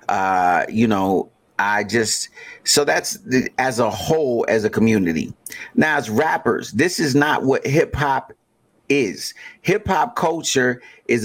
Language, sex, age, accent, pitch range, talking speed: English, male, 30-49, American, 110-130 Hz, 145 wpm